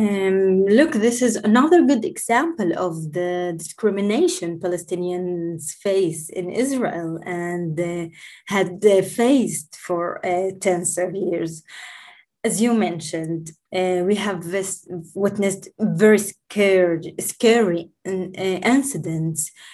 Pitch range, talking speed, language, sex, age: 170-195 Hz, 105 wpm, English, female, 20-39